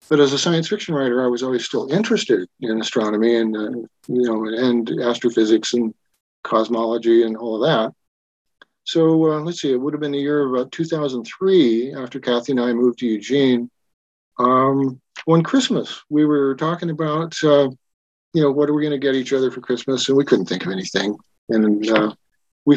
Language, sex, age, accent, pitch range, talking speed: English, male, 40-59, American, 115-150 Hz, 195 wpm